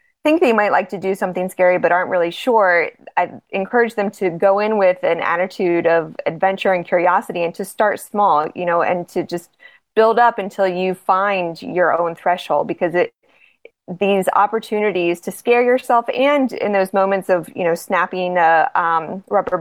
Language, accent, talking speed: English, American, 185 wpm